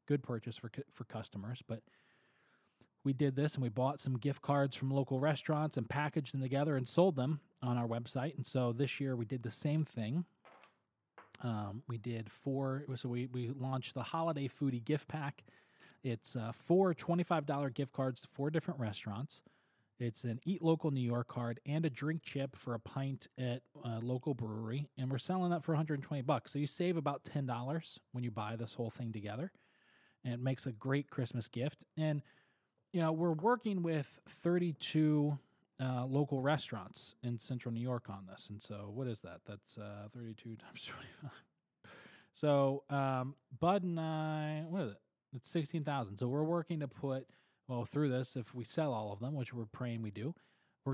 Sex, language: male, English